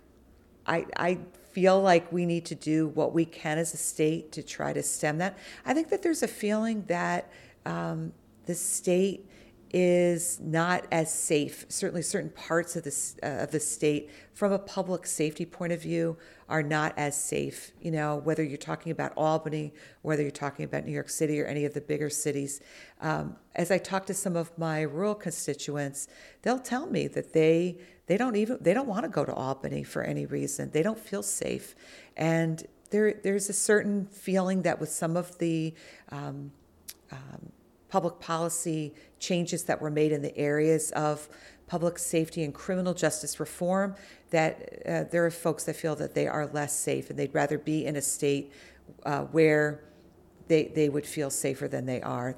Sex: female